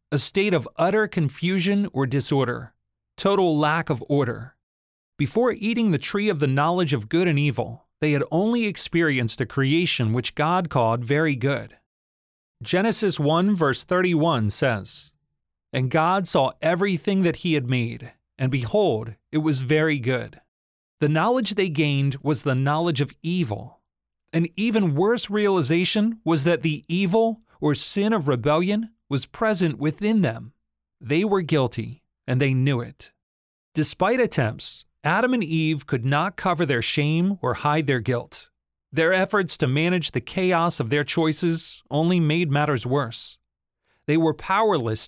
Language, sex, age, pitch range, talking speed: English, male, 40-59, 130-180 Hz, 150 wpm